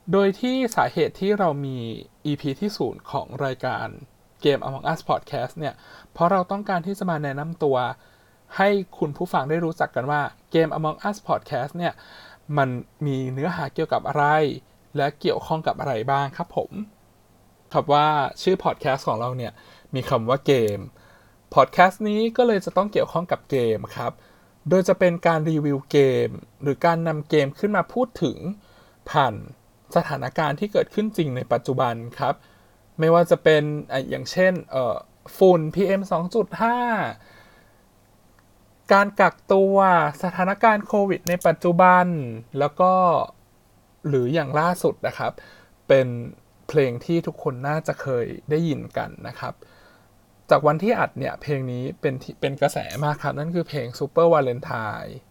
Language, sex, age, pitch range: Thai, male, 20-39, 130-180 Hz